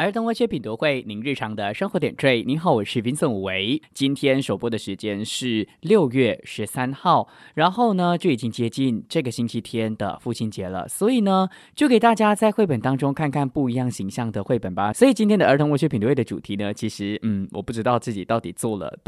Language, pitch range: English, 105-165 Hz